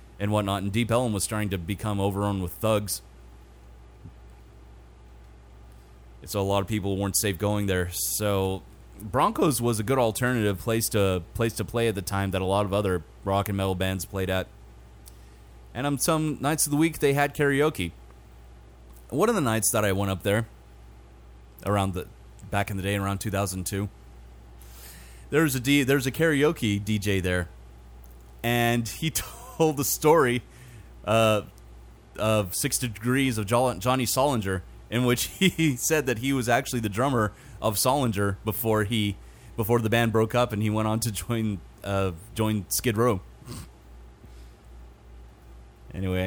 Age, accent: 30-49, American